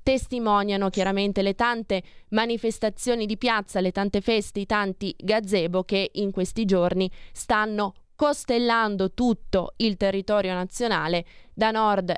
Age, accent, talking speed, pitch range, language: 20-39, native, 125 wpm, 190-220 Hz, Italian